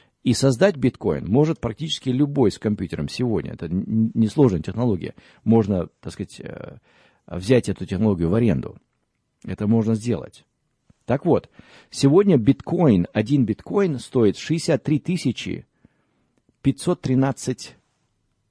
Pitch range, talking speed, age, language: 110-140 Hz, 105 wpm, 50-69, Russian